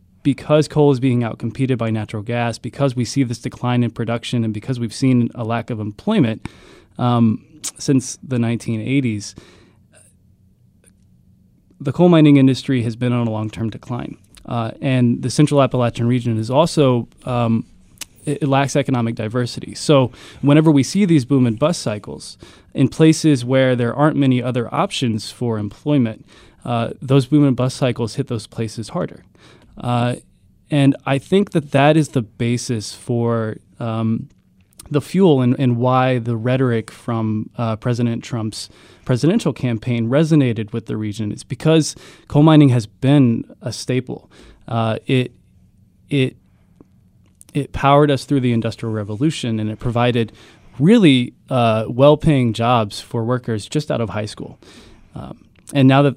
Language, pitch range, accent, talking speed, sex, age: English, 115-140 Hz, American, 150 wpm, male, 20-39